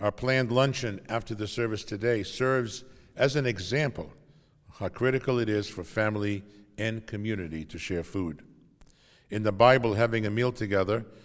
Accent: American